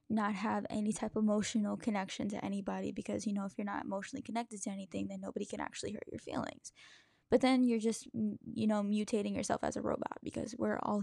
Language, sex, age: English, female, 10-29